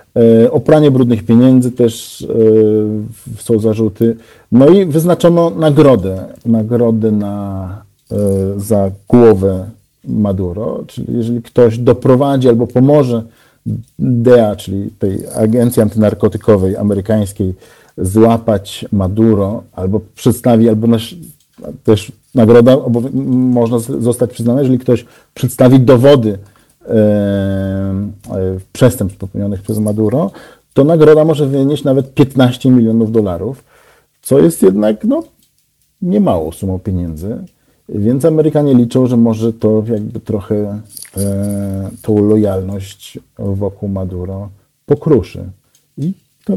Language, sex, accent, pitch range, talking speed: Polish, male, native, 105-130 Hz, 105 wpm